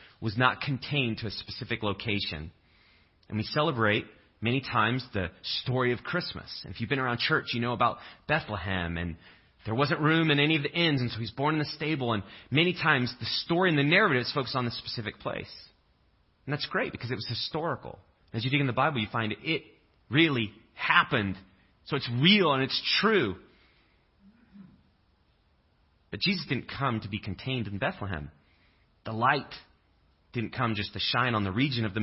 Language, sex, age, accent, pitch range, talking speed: English, male, 30-49, American, 95-135 Hz, 185 wpm